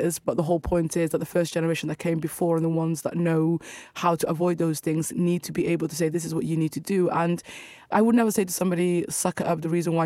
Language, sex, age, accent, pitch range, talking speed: English, female, 20-39, British, 160-175 Hz, 285 wpm